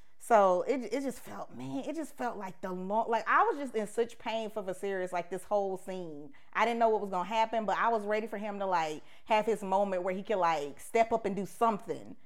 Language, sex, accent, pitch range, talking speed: English, female, American, 190-250 Hz, 260 wpm